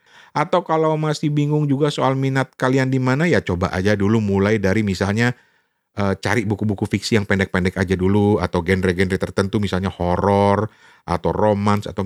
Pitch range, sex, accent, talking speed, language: 95-130 Hz, male, native, 165 wpm, Indonesian